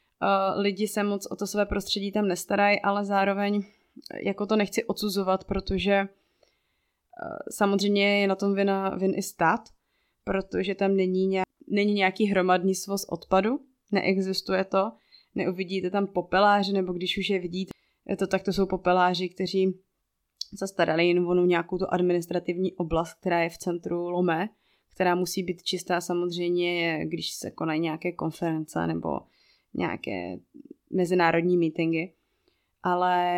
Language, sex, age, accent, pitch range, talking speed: Czech, female, 20-39, native, 175-195 Hz, 140 wpm